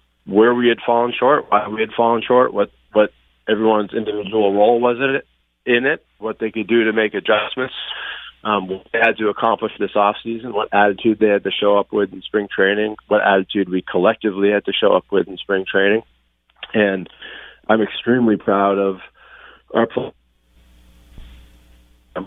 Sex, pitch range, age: male, 90-110 Hz, 40-59